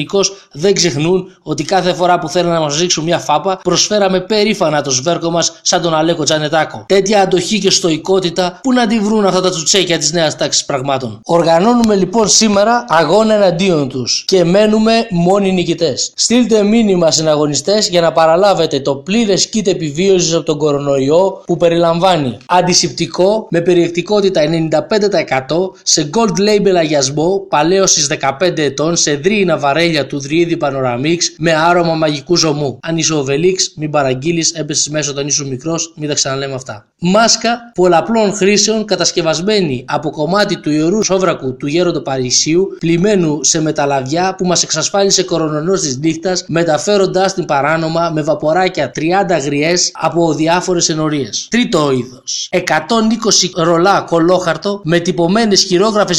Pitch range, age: 155-190 Hz, 20-39